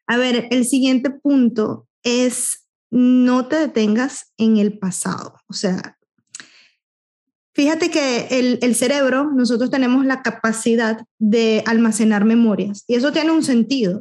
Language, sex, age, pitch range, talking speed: Spanish, female, 20-39, 220-265 Hz, 135 wpm